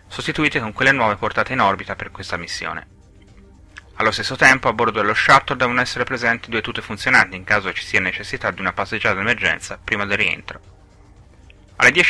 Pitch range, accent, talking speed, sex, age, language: 95-125 Hz, native, 180 wpm, male, 30-49, Italian